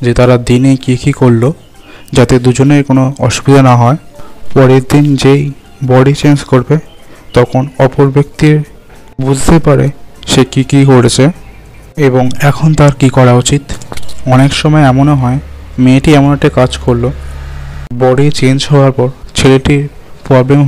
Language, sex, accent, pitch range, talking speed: Bengali, male, native, 125-145 Hz, 95 wpm